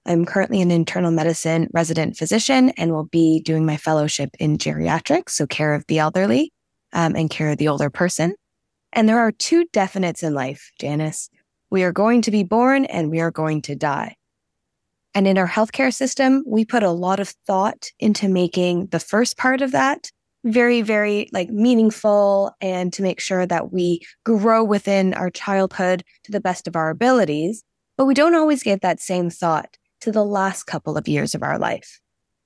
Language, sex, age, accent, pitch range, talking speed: English, female, 20-39, American, 170-230 Hz, 190 wpm